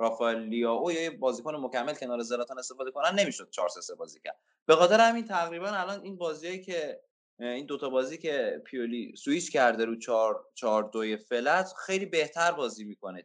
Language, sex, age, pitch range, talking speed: Persian, male, 20-39, 120-185 Hz, 165 wpm